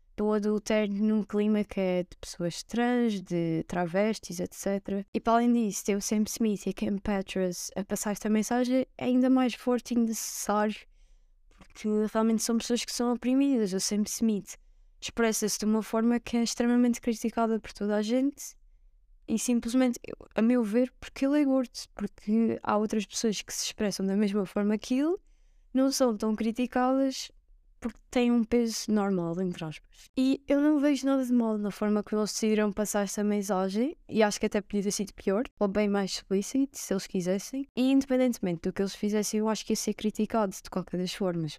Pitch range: 195-235 Hz